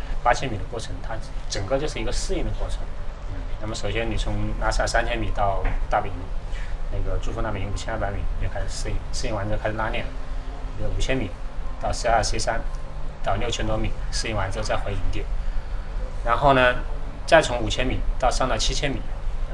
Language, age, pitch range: Chinese, 30-49, 95-115 Hz